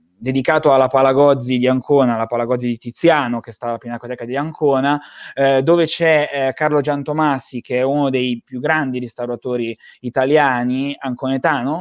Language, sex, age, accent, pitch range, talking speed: Italian, male, 20-39, native, 125-155 Hz, 150 wpm